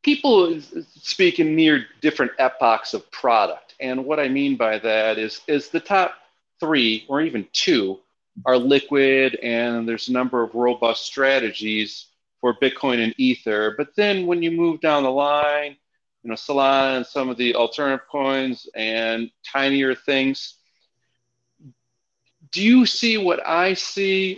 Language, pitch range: English, 120-145 Hz